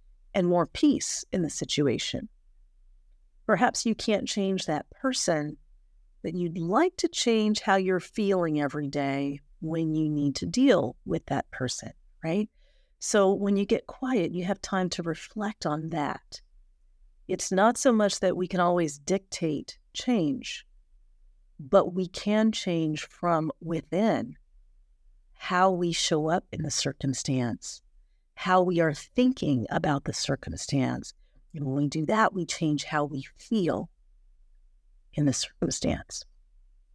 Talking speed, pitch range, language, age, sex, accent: 140 wpm, 150-220 Hz, English, 40-59, female, American